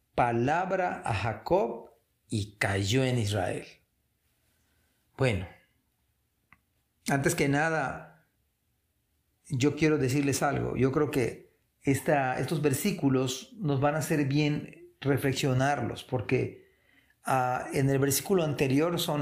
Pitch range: 120-150 Hz